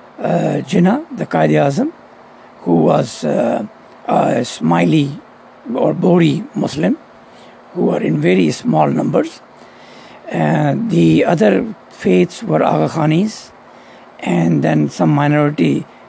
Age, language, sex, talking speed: 60-79, English, male, 110 wpm